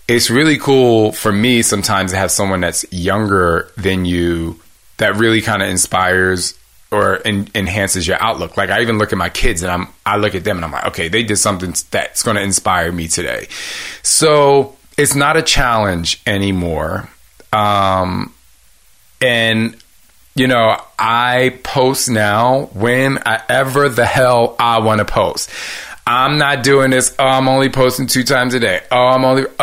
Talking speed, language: 170 wpm, English